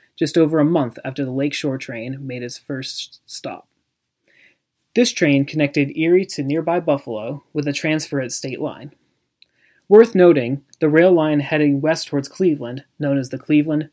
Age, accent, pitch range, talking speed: 30-49, American, 130-165 Hz, 165 wpm